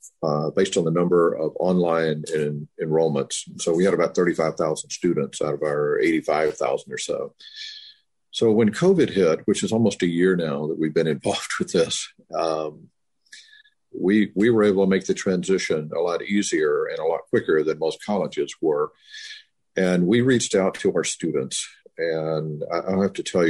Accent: American